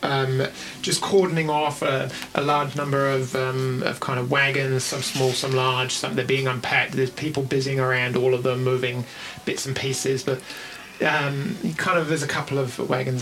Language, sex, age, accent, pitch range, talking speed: English, male, 30-49, British, 130-150 Hz, 190 wpm